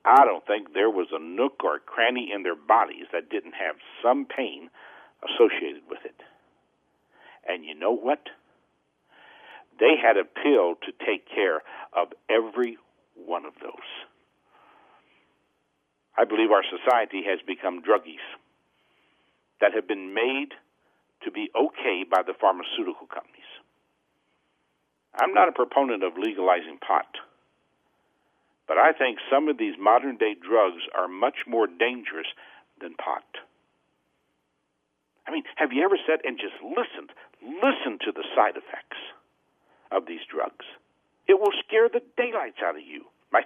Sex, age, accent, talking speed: male, 60-79, American, 140 wpm